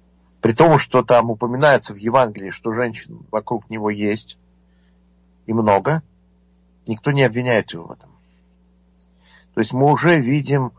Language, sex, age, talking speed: Russian, male, 50-69, 140 wpm